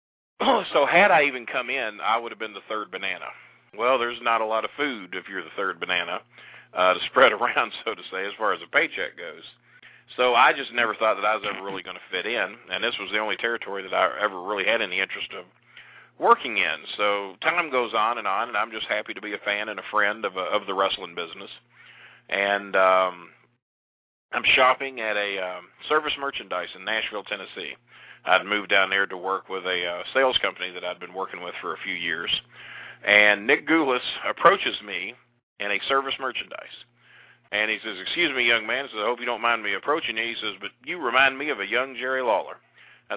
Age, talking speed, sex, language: 40-59, 220 wpm, male, English